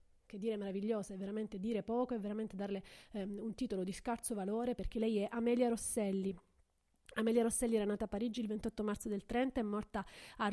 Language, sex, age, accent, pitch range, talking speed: Italian, female, 30-49, native, 200-235 Hz, 200 wpm